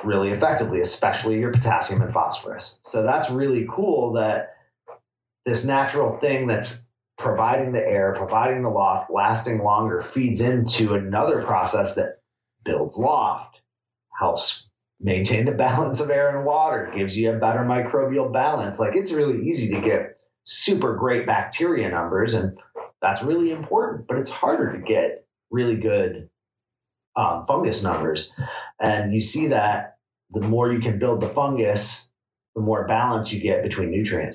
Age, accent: 30-49, American